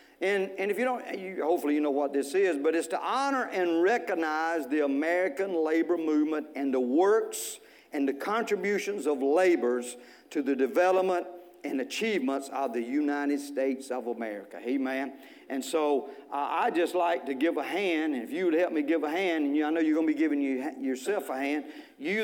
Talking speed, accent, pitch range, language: 195 wpm, American, 160-270 Hz, English